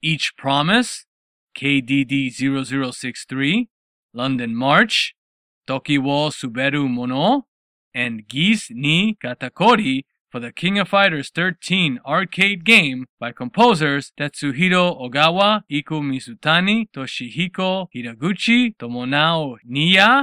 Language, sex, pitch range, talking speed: English, male, 135-195 Hz, 90 wpm